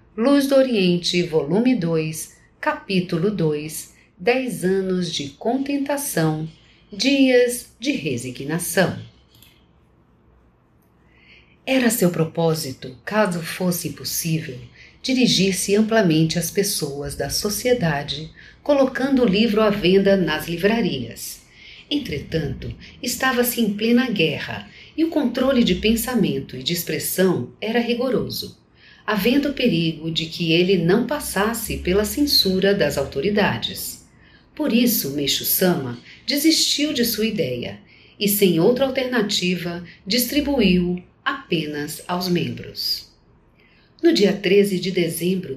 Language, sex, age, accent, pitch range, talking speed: Portuguese, female, 50-69, Brazilian, 165-240 Hz, 105 wpm